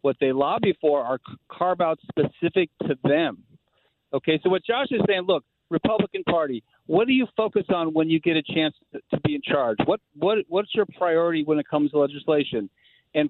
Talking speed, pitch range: 200 wpm, 150-190 Hz